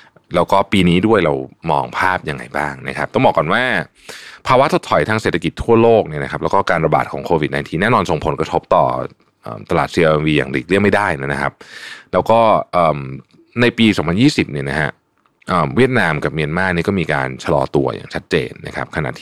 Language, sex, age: Thai, male, 20-39